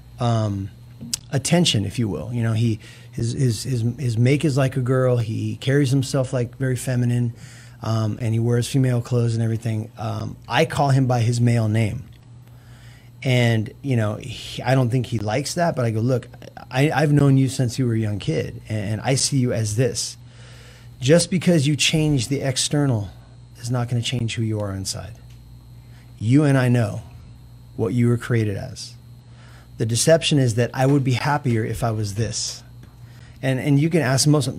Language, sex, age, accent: English, male, 30-49, American